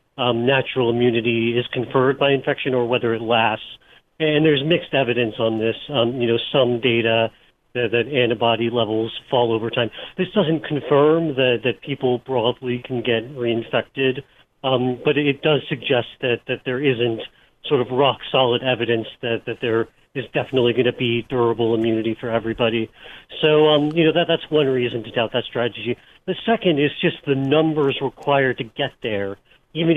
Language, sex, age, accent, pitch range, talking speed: English, male, 40-59, American, 115-140 Hz, 175 wpm